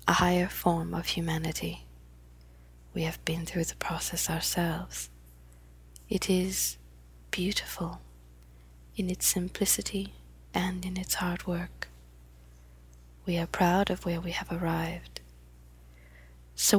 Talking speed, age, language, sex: 115 wpm, 20-39, English, female